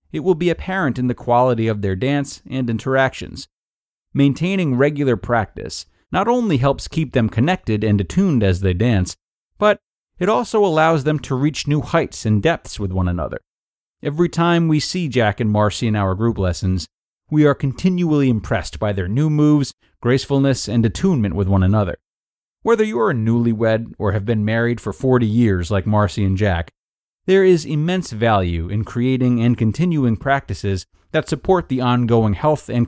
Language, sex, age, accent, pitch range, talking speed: English, male, 30-49, American, 100-145 Hz, 175 wpm